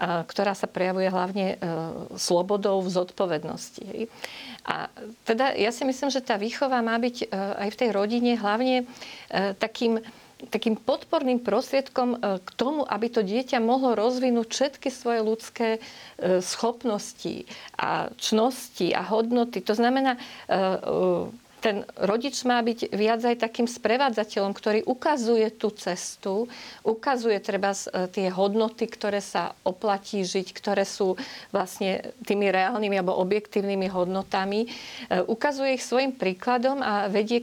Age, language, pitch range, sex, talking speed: 40-59, Slovak, 200-245 Hz, female, 125 wpm